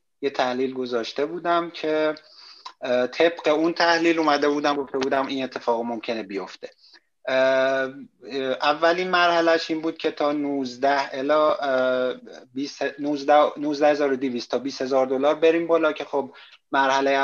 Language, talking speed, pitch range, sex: Persian, 120 wpm, 125-150 Hz, male